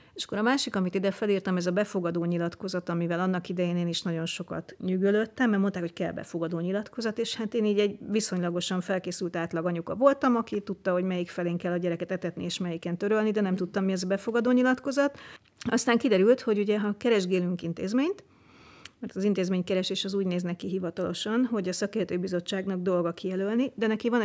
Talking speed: 195 wpm